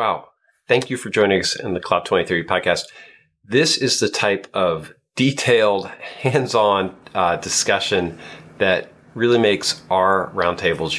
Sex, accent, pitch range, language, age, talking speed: male, American, 115-155 Hz, English, 40-59, 130 wpm